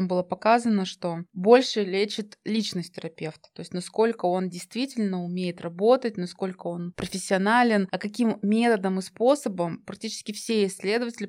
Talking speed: 135 wpm